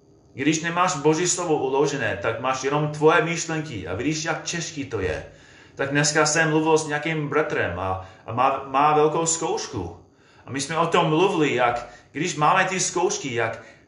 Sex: male